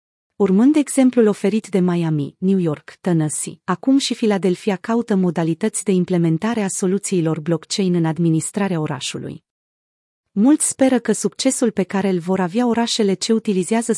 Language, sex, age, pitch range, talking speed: Romanian, female, 30-49, 175-225 Hz, 140 wpm